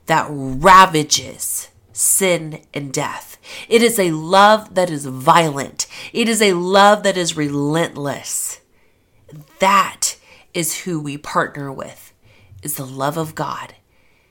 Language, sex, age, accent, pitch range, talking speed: English, female, 30-49, American, 140-185 Hz, 125 wpm